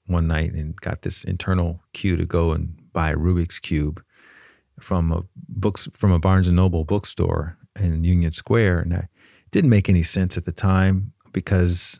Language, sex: English, male